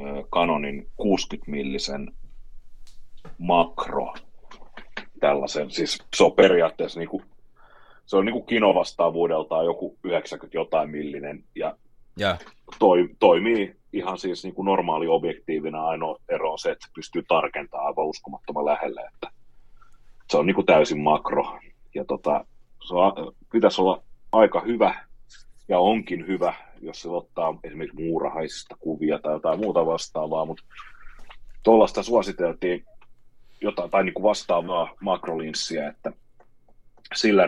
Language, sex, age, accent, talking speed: Finnish, male, 30-49, native, 120 wpm